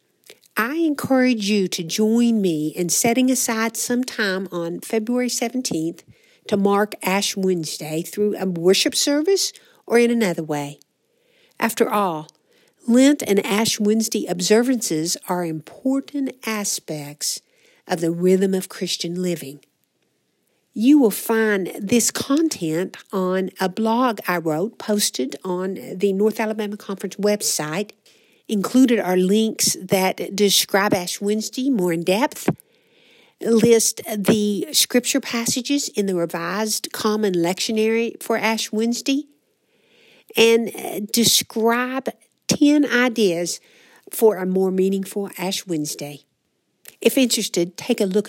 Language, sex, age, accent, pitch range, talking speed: English, female, 60-79, American, 180-235 Hz, 120 wpm